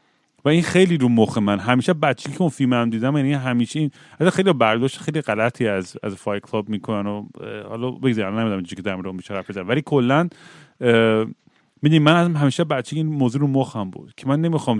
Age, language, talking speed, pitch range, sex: 30-49, Persian, 205 wpm, 110-150 Hz, male